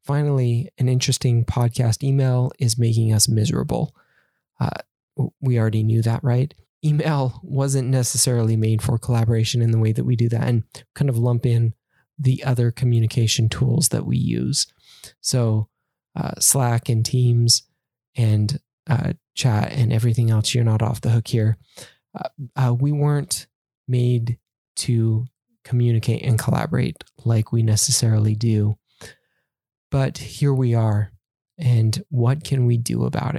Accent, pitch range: American, 110-125 Hz